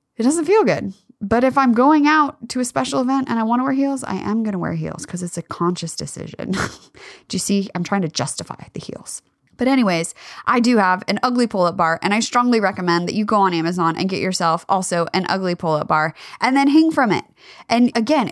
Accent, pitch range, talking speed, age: American, 180-255 Hz, 240 wpm, 20-39